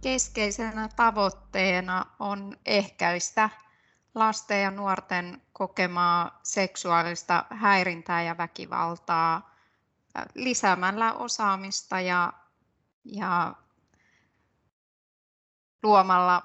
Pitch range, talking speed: 170-195 Hz, 60 wpm